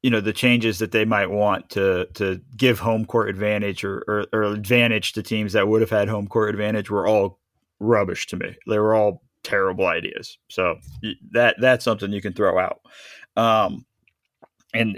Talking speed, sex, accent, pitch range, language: 190 wpm, male, American, 105-125 Hz, English